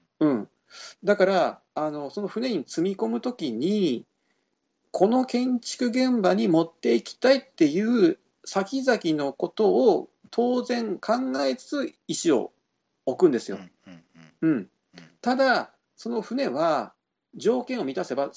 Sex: male